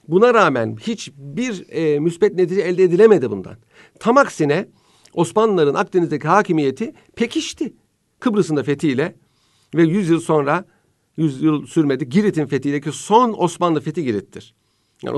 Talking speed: 130 wpm